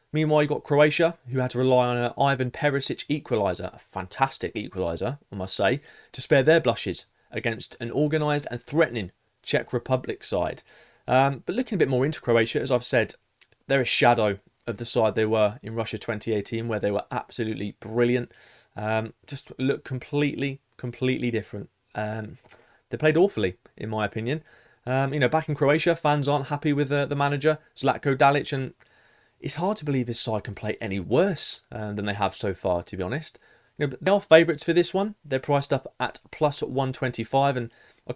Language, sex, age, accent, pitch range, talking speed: English, male, 20-39, British, 110-145 Hz, 195 wpm